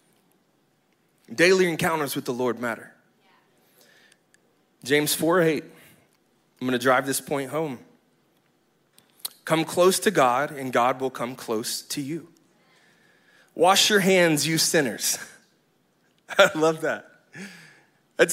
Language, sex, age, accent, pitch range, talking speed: English, male, 20-39, American, 120-170 Hz, 110 wpm